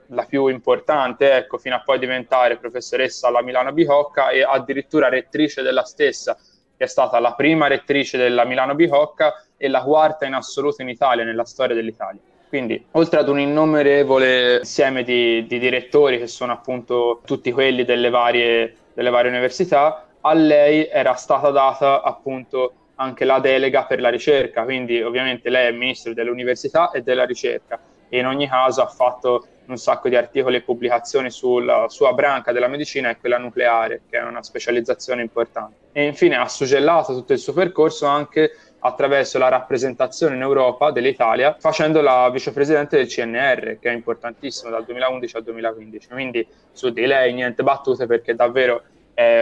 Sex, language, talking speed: male, Italian, 165 wpm